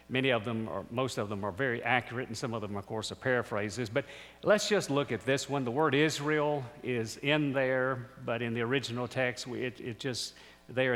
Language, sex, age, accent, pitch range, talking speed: English, male, 50-69, American, 125-175 Hz, 220 wpm